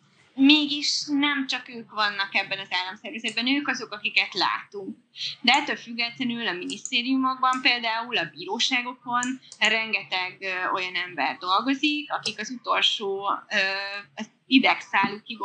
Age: 20-39